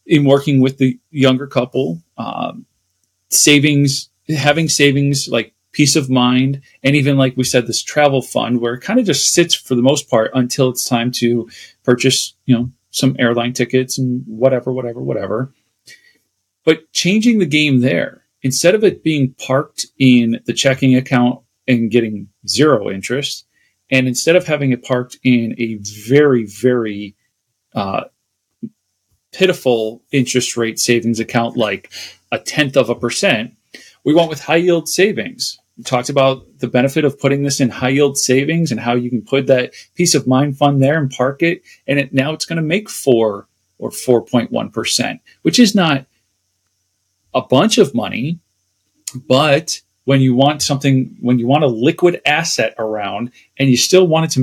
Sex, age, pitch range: male, 40-59, 120-145 Hz